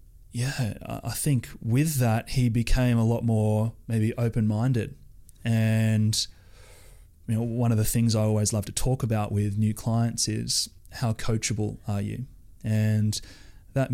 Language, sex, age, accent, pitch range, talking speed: English, male, 20-39, Australian, 105-120 Hz, 150 wpm